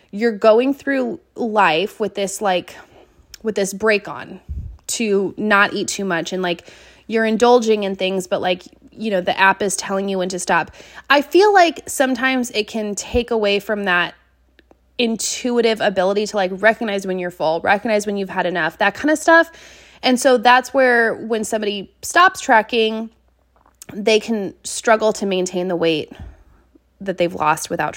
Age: 20-39